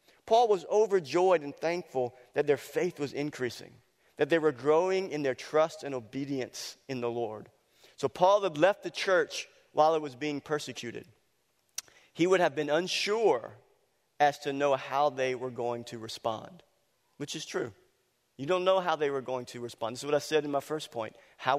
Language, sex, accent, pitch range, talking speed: English, male, American, 135-160 Hz, 190 wpm